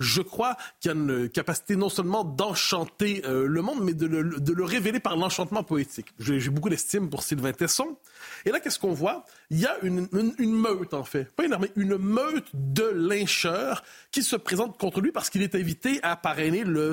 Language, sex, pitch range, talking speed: French, male, 160-225 Hz, 225 wpm